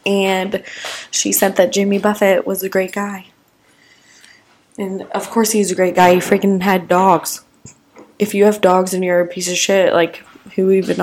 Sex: female